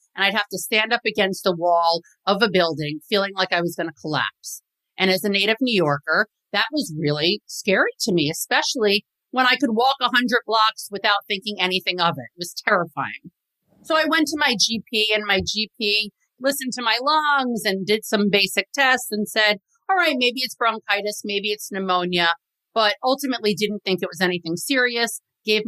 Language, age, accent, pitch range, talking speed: English, 40-59, American, 170-225 Hz, 195 wpm